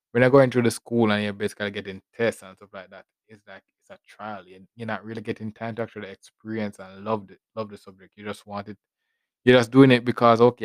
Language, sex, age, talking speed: English, male, 20-39, 255 wpm